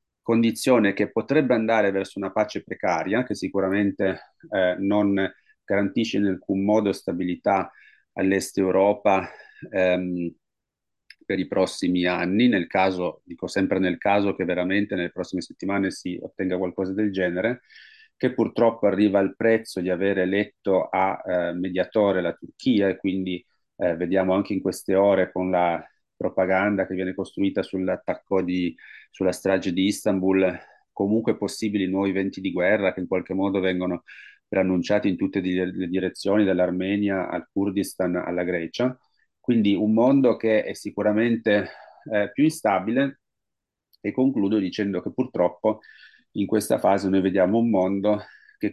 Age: 30-49